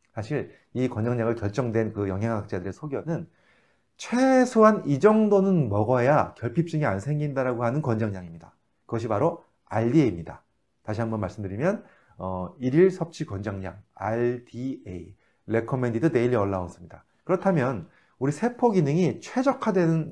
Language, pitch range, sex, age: Korean, 105-165 Hz, male, 30-49